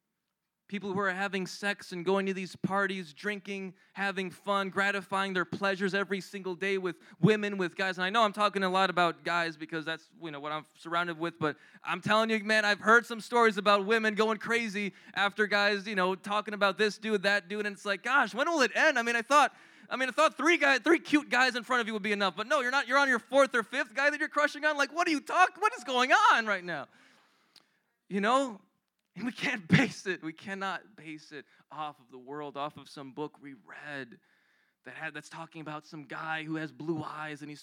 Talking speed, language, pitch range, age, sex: 240 wpm, English, 175-230 Hz, 20-39, male